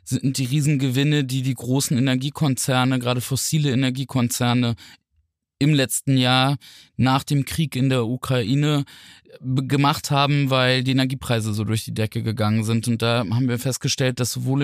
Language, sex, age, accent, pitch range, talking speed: German, male, 20-39, German, 115-135 Hz, 150 wpm